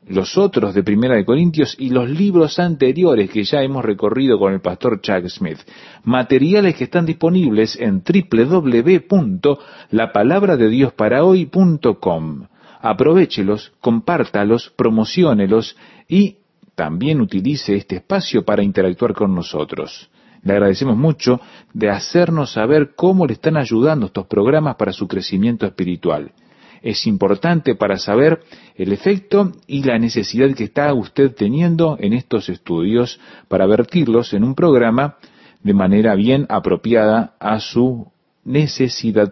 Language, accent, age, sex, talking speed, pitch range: Spanish, Argentinian, 40-59, male, 125 wpm, 105-175 Hz